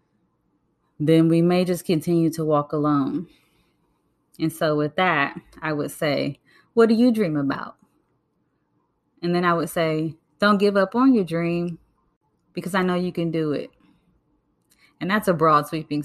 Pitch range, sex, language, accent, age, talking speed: 155-190 Hz, female, English, American, 20-39, 160 wpm